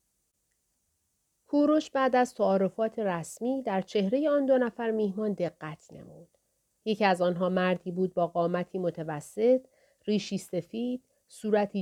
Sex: female